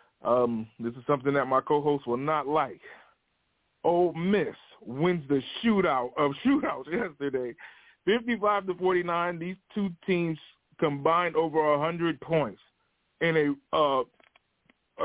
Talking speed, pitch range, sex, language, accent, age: 125 wpm, 135-160 Hz, male, English, American, 20-39